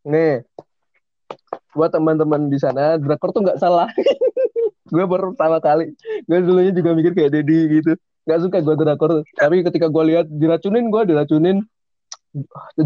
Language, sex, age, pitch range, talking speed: Indonesian, male, 20-39, 145-180 Hz, 150 wpm